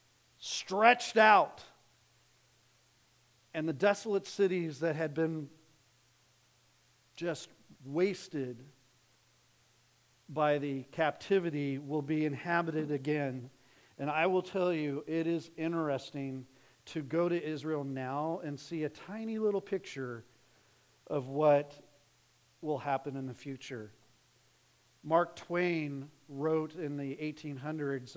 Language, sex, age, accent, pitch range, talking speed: English, male, 40-59, American, 125-160 Hz, 105 wpm